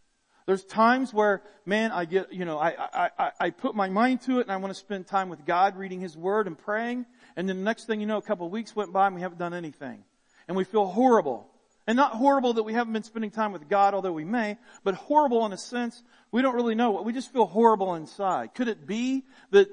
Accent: American